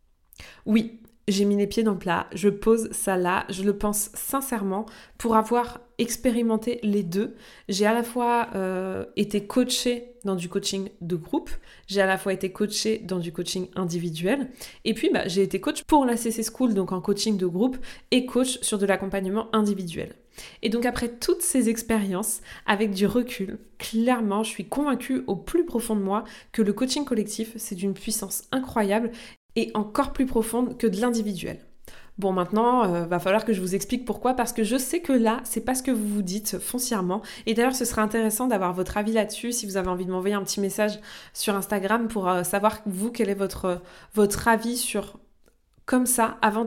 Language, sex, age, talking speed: French, female, 20-39, 200 wpm